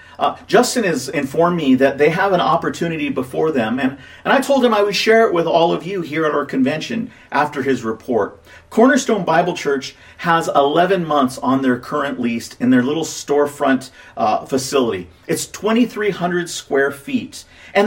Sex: male